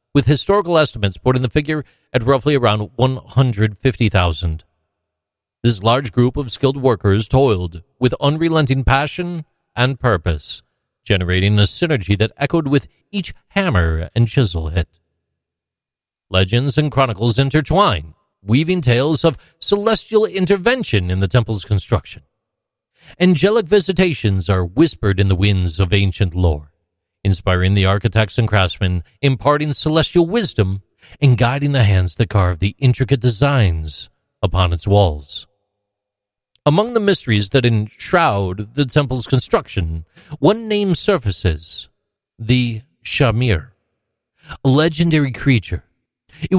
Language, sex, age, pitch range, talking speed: English, male, 40-59, 100-150 Hz, 120 wpm